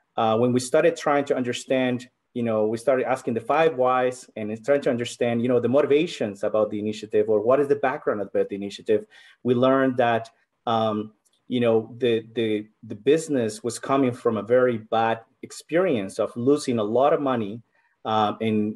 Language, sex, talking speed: English, male, 185 wpm